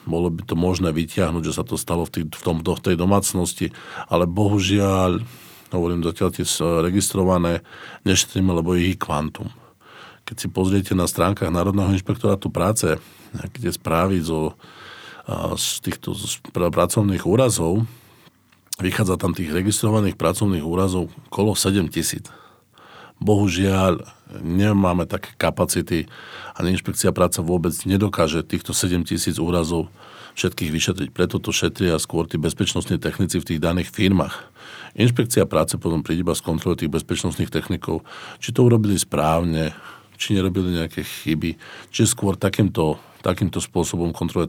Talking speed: 125 wpm